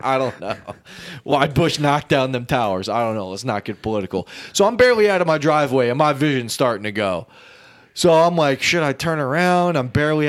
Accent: American